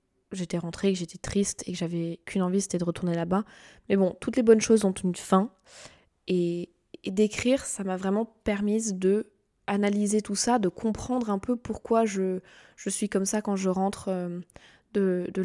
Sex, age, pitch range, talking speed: female, 20-39, 175-205 Hz, 185 wpm